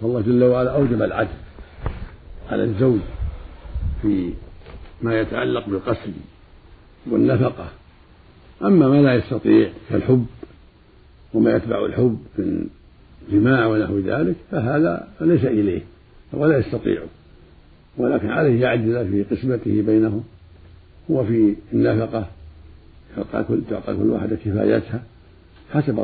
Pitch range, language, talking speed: 95-115 Hz, Arabic, 100 wpm